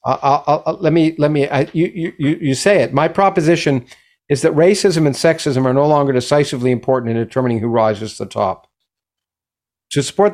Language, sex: English, male